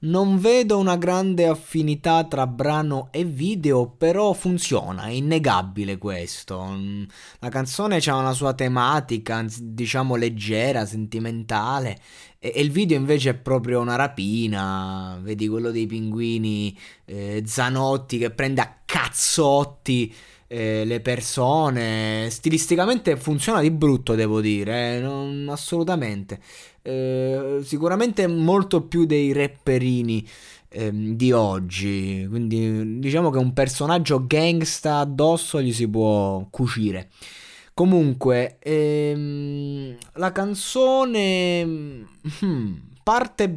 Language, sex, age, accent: Italian, male, 20-39, native